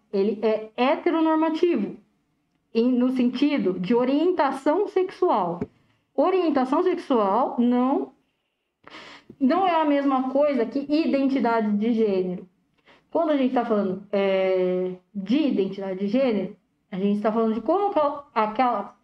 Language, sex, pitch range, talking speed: Portuguese, female, 215-285 Hz, 115 wpm